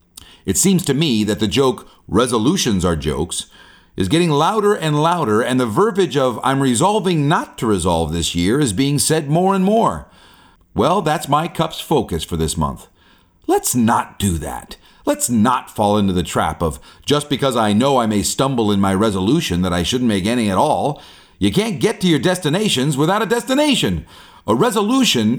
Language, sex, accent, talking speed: English, male, American, 185 wpm